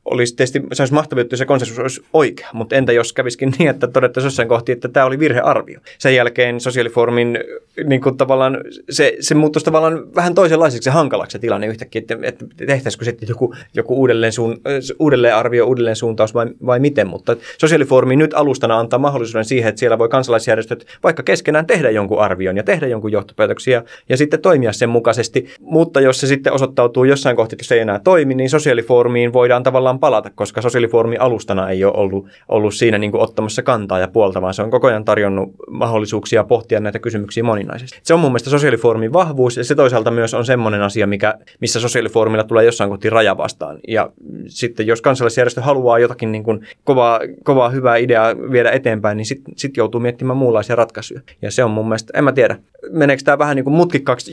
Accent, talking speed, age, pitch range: native, 190 wpm, 20-39, 115-135 Hz